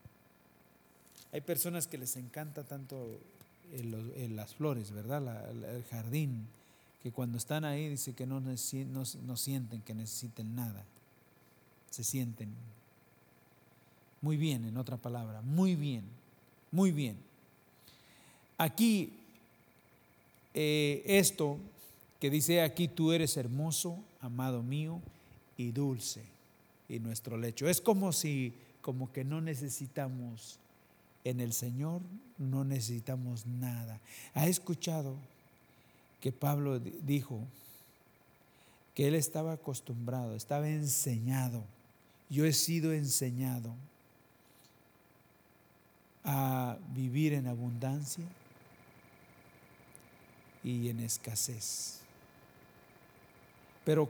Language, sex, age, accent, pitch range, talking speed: English, male, 50-69, Mexican, 115-155 Hz, 100 wpm